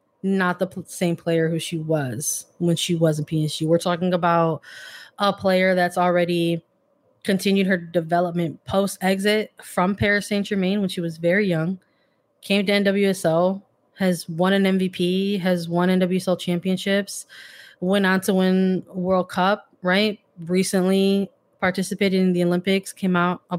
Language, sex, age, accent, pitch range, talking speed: English, female, 20-39, American, 175-210 Hz, 150 wpm